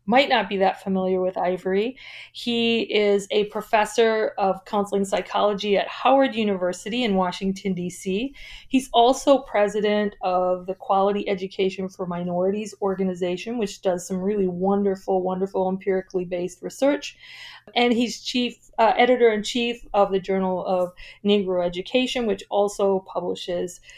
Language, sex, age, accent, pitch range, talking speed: English, female, 40-59, American, 185-225 Hz, 130 wpm